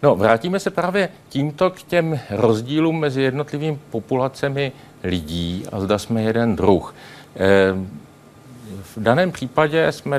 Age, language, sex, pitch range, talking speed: 50-69, Czech, male, 105-140 Hz, 130 wpm